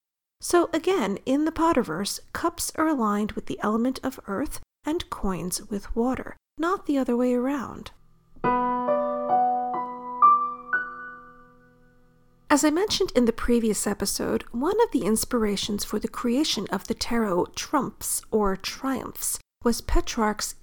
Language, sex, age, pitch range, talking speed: English, female, 40-59, 215-285 Hz, 130 wpm